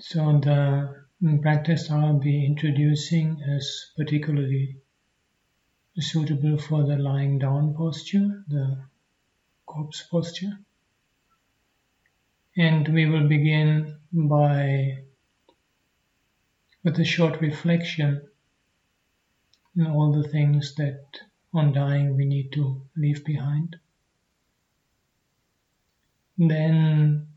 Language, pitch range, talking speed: English, 140-160 Hz, 85 wpm